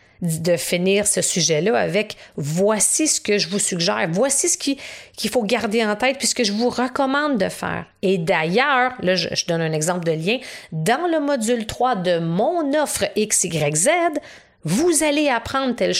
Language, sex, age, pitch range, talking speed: French, female, 40-59, 175-255 Hz, 175 wpm